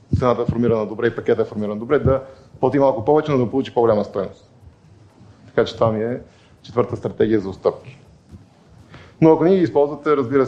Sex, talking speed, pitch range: male, 190 wpm, 115-140 Hz